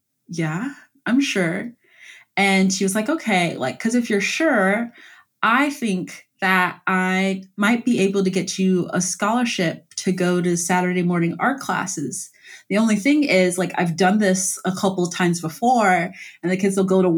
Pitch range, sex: 170-215 Hz, female